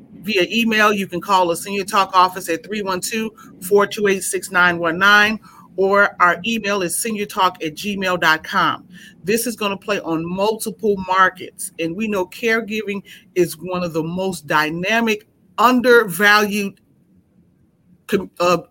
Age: 30-49